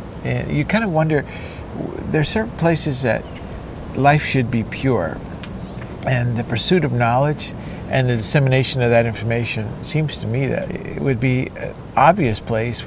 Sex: male